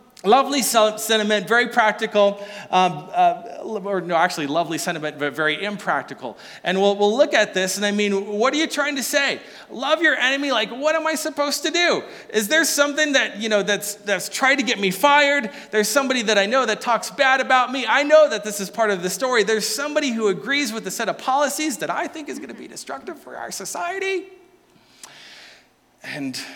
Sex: male